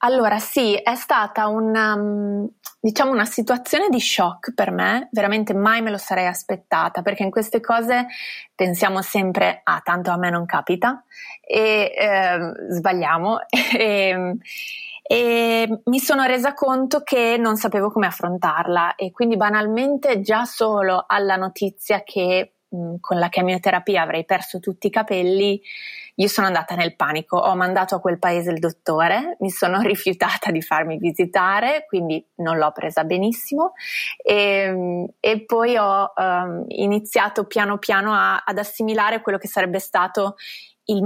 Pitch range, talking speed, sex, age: 185-225 Hz, 140 wpm, female, 20-39